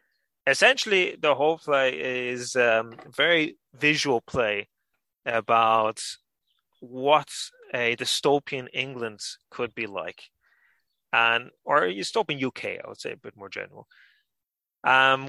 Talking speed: 120 wpm